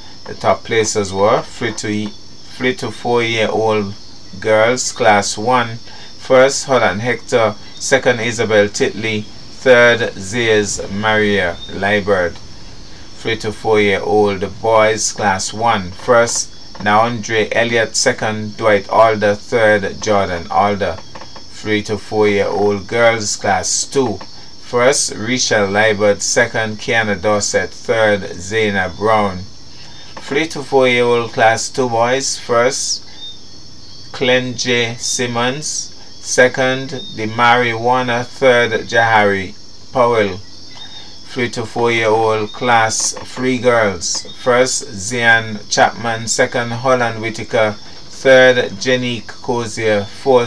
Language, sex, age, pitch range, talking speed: English, male, 30-49, 100-120 Hz, 110 wpm